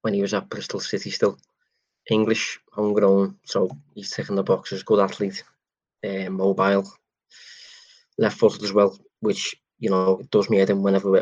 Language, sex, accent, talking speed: English, male, British, 170 wpm